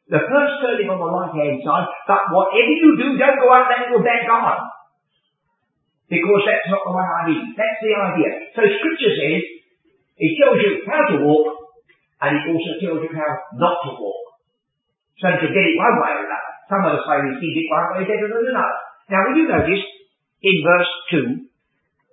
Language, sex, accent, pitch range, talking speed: English, female, British, 165-260 Hz, 200 wpm